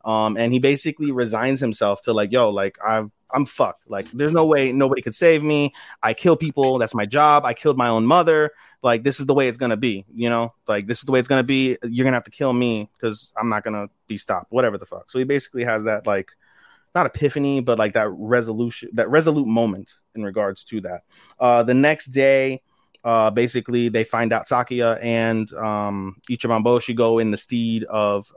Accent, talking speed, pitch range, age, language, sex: American, 225 wpm, 110-140 Hz, 30-49, English, male